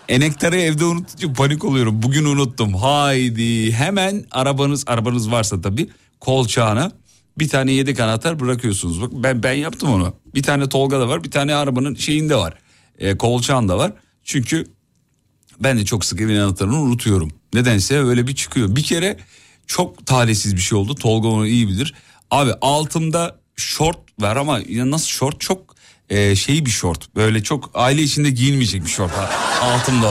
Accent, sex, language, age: native, male, Turkish, 40-59